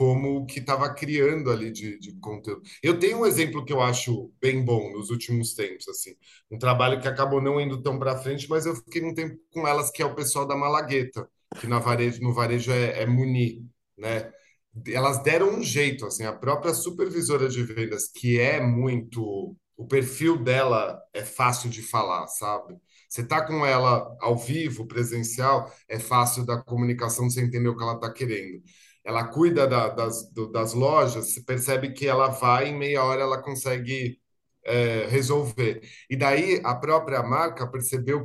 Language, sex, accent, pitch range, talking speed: Portuguese, male, Brazilian, 120-150 Hz, 180 wpm